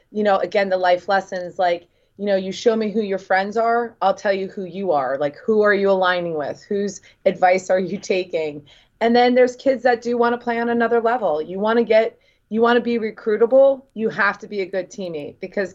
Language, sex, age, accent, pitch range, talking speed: English, female, 30-49, American, 190-225 Hz, 225 wpm